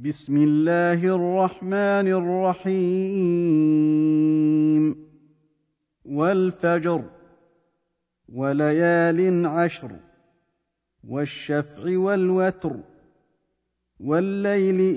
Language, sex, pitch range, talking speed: Arabic, male, 150-185 Hz, 40 wpm